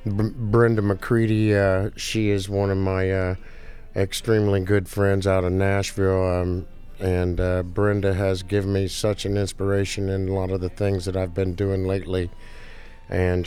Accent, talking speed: American, 165 wpm